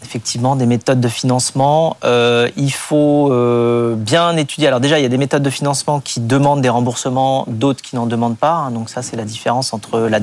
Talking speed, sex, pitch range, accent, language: 210 wpm, male, 110-135 Hz, French, French